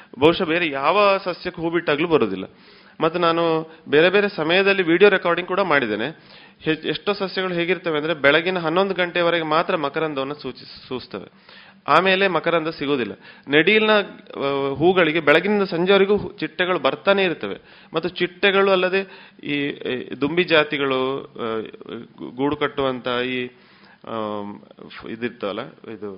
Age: 30-49